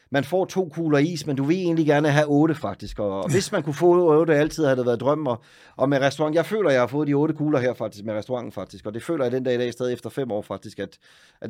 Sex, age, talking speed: male, 30-49, 290 wpm